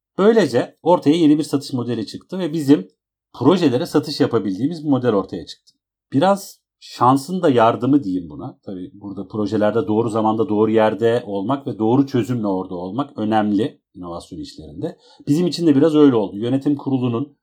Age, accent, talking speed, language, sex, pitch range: 40-59, native, 160 wpm, Turkish, male, 110-155 Hz